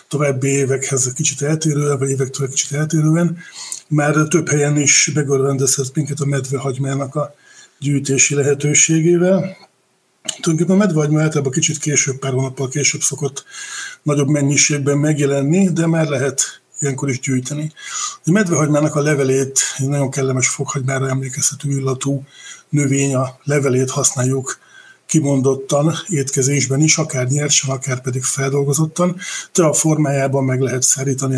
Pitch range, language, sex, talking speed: 135-155 Hz, Hungarian, male, 130 wpm